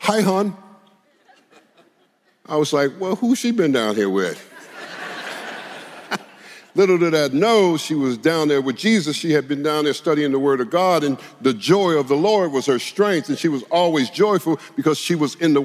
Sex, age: male, 50-69